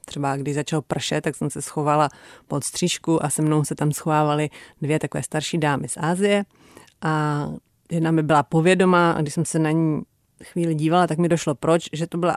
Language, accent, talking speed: Czech, native, 205 wpm